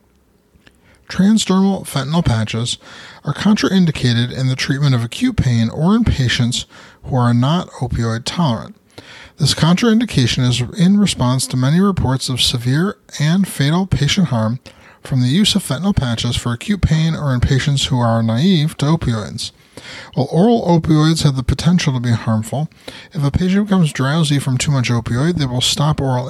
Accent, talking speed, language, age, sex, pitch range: American, 165 wpm, English, 30-49, male, 120-165 Hz